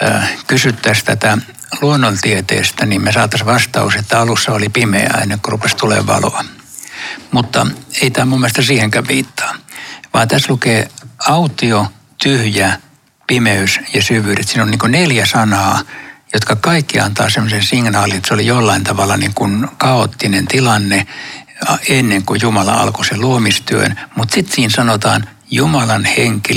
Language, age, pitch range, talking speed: Finnish, 60-79, 105-125 Hz, 140 wpm